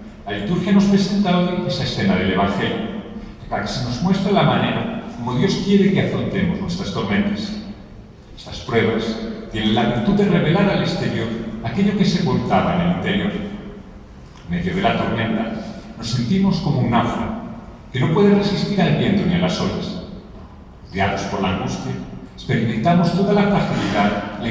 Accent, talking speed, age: Spanish, 165 wpm, 40-59